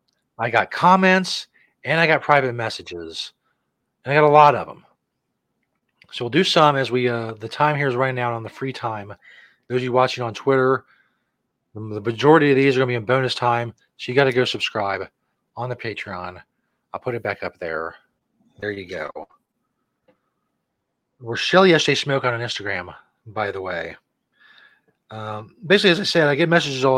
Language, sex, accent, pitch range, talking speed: English, male, American, 115-155 Hz, 190 wpm